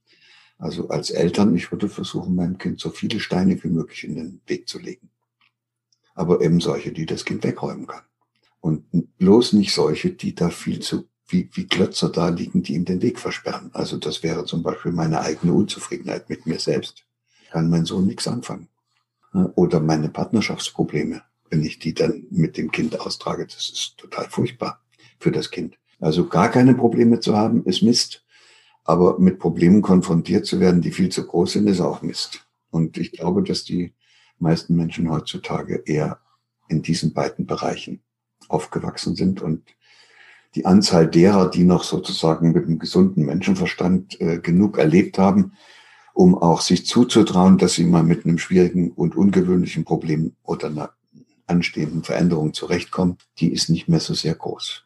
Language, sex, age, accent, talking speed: German, male, 60-79, German, 170 wpm